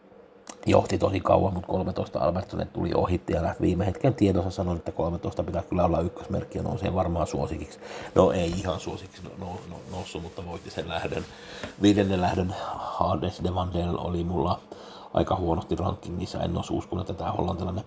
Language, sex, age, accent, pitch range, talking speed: Finnish, male, 60-79, native, 90-105 Hz, 170 wpm